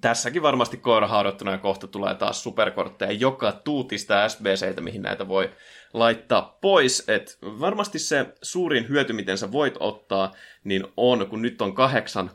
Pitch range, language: 100-125 Hz, Finnish